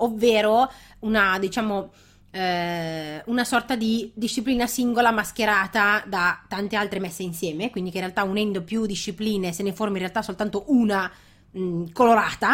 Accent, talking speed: native, 145 wpm